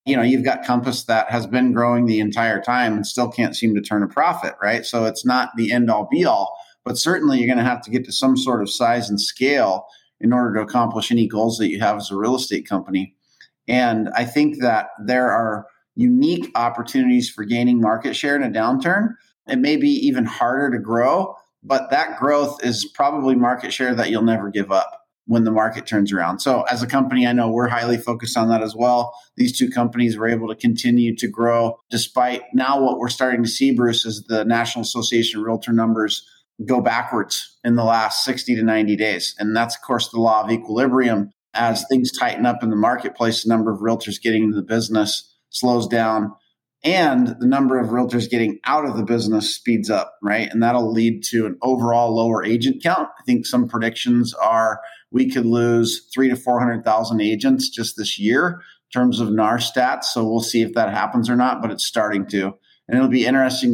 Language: English